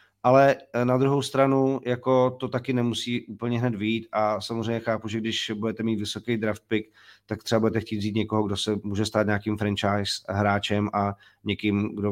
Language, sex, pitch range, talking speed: Czech, male, 105-120 Hz, 185 wpm